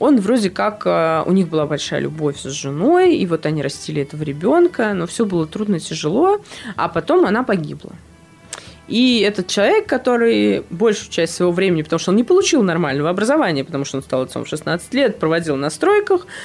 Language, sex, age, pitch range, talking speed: Russian, female, 20-39, 150-230 Hz, 190 wpm